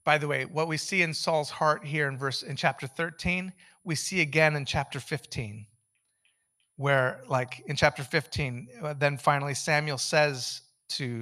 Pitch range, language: 130-170 Hz, English